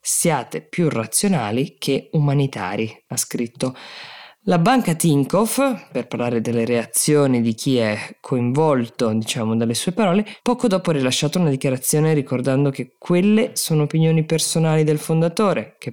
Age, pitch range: 20-39, 120-155 Hz